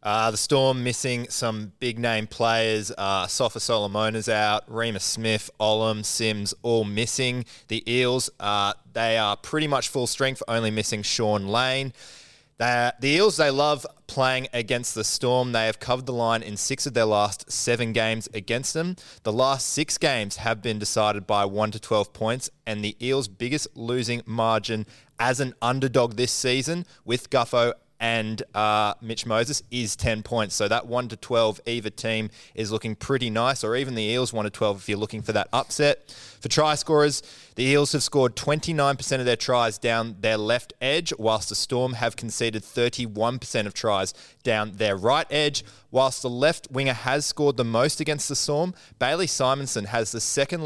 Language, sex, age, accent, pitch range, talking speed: English, male, 20-39, Australian, 110-130 Hz, 180 wpm